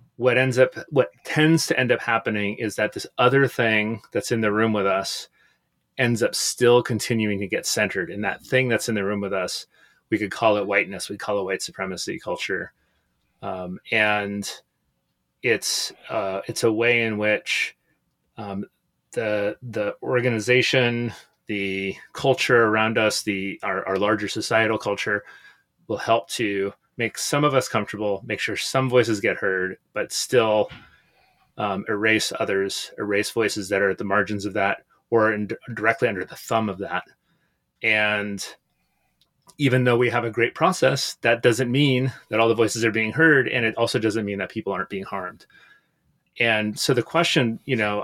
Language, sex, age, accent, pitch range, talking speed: English, male, 30-49, American, 100-125 Hz, 175 wpm